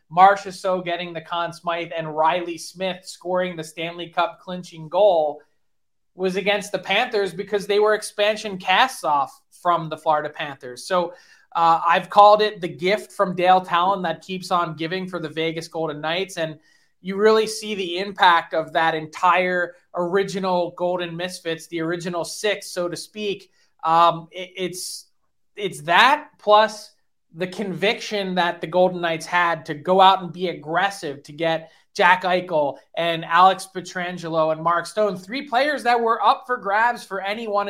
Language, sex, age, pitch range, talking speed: English, male, 20-39, 170-200 Hz, 165 wpm